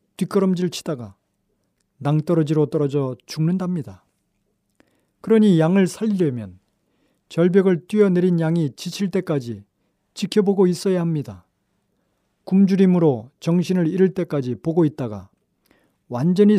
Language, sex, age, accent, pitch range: Korean, male, 40-59, native, 150-190 Hz